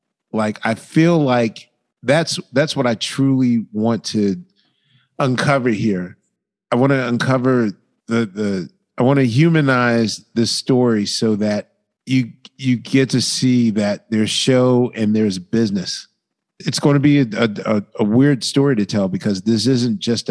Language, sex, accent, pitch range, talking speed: English, male, American, 105-135 Hz, 155 wpm